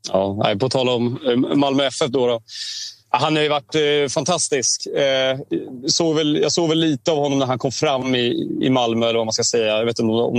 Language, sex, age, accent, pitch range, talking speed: Swedish, male, 30-49, native, 115-145 Hz, 195 wpm